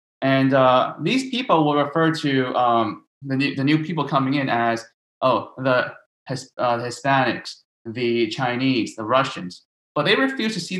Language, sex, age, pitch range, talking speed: English, male, 30-49, 125-165 Hz, 160 wpm